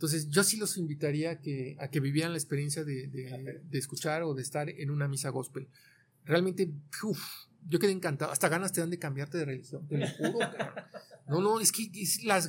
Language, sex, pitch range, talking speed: Spanish, male, 145-190 Hz, 220 wpm